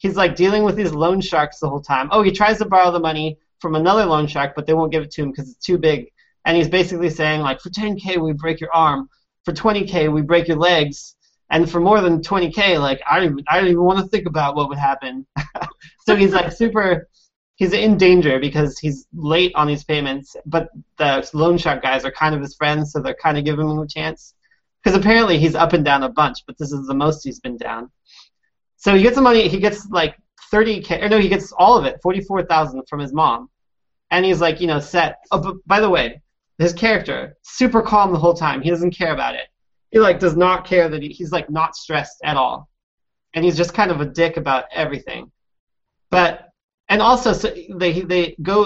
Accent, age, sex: American, 20-39, male